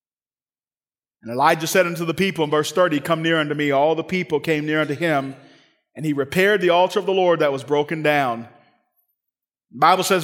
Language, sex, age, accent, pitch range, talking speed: English, male, 40-59, American, 165-270 Hz, 205 wpm